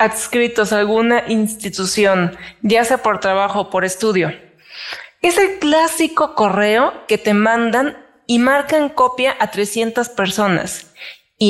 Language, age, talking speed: Spanish, 20-39, 130 wpm